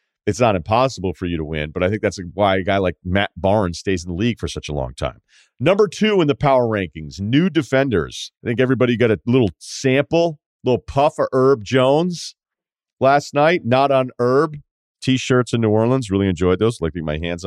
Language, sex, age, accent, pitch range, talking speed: English, male, 40-59, American, 85-120 Hz, 215 wpm